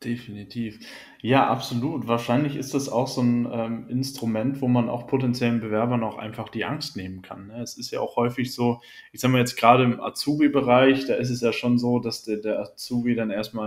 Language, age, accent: German, 20-39, German